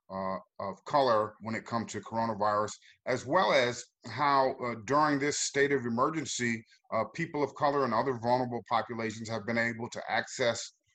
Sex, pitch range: male, 115-150 Hz